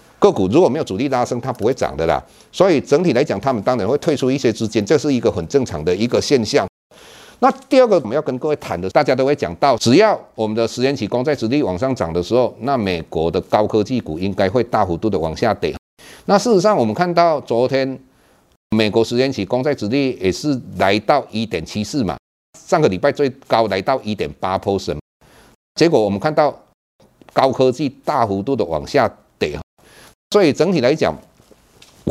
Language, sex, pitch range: Chinese, male, 110-150 Hz